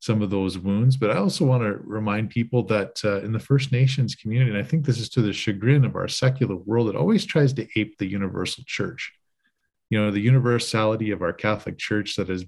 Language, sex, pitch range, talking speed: English, male, 100-125 Hz, 230 wpm